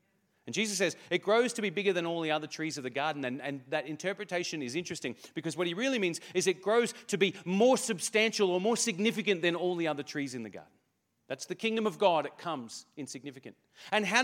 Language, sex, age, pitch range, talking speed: English, male, 40-59, 190-240 Hz, 230 wpm